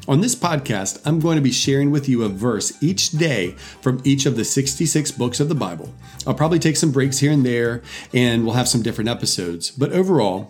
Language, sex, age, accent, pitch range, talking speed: English, male, 40-59, American, 115-145 Hz, 225 wpm